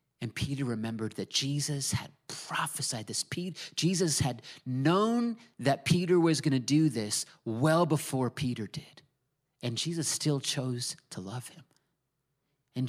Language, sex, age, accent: English, male, 30-49, American